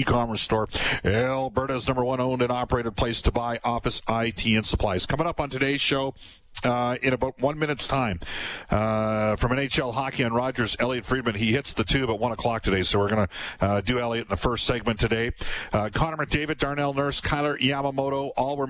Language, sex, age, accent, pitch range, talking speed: English, male, 50-69, American, 105-130 Hz, 200 wpm